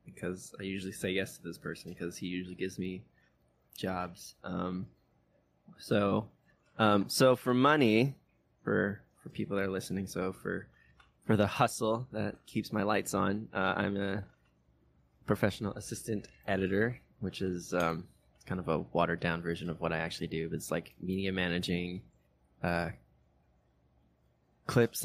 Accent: American